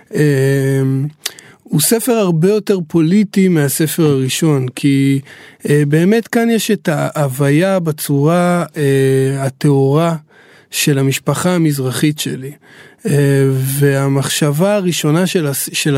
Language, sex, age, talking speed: Hebrew, male, 20-39, 100 wpm